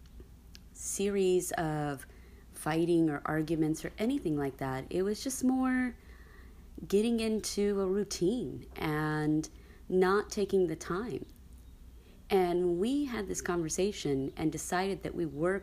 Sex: female